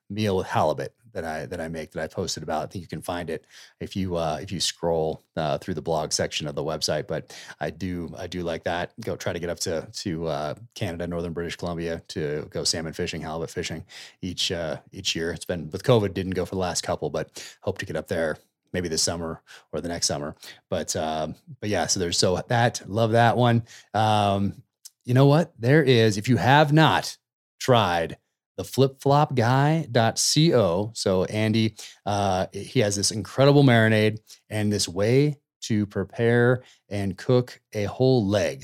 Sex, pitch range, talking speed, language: male, 95-115 Hz, 195 wpm, English